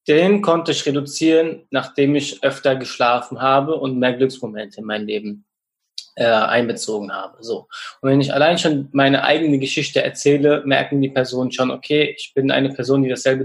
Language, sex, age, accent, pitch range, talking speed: German, male, 20-39, German, 130-150 Hz, 170 wpm